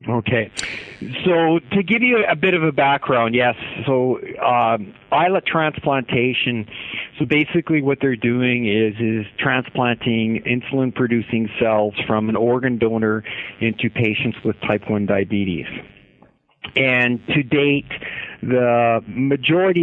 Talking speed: 120 wpm